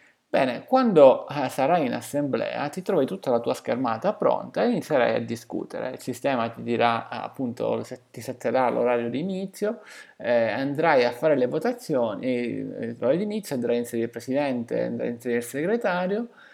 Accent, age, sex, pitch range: native, 30-49, male, 120-195 Hz